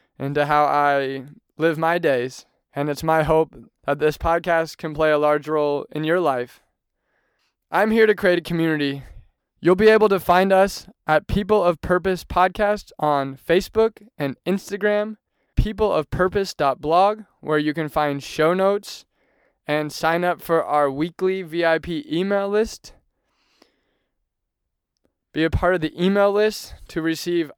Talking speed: 145 wpm